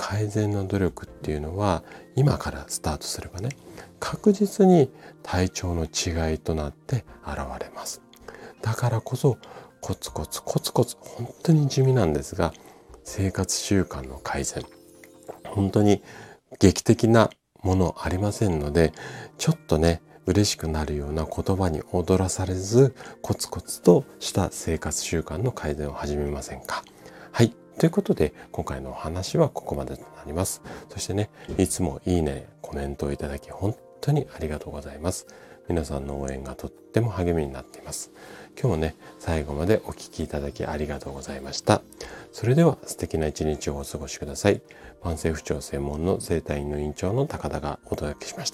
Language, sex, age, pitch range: Japanese, male, 40-59, 75-110 Hz